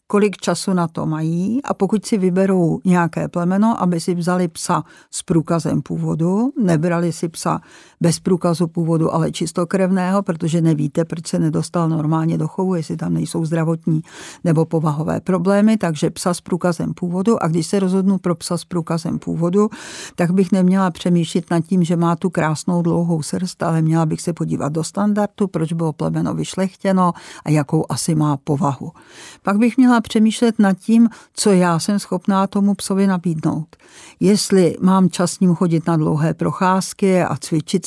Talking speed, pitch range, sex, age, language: 170 wpm, 165-195 Hz, female, 50-69, Czech